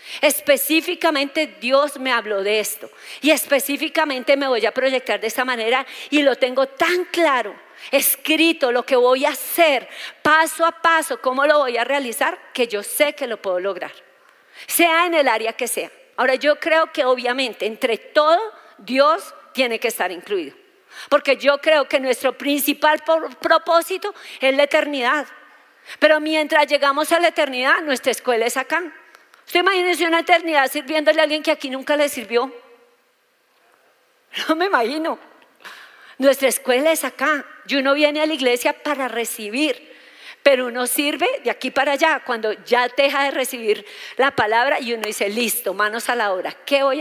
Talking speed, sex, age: 165 wpm, female, 40-59